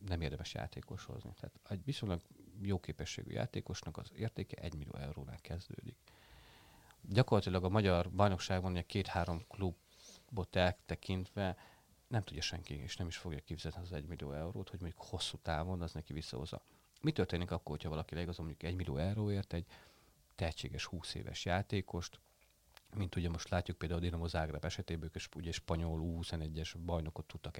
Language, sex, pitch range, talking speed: Hungarian, male, 85-100 Hz, 160 wpm